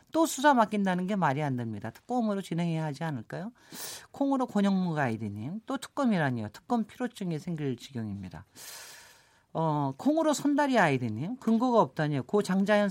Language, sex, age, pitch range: Korean, male, 40-59, 155-225 Hz